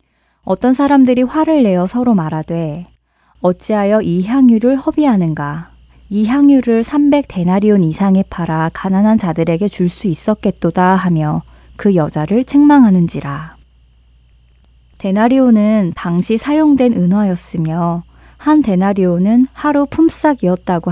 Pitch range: 170-230 Hz